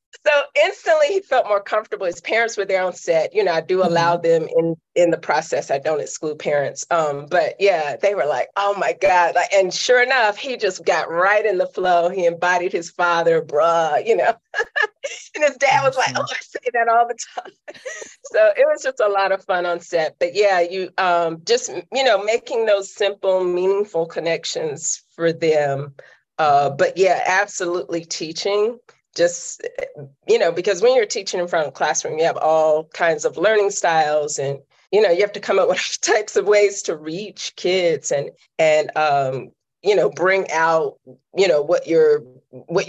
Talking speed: 195 wpm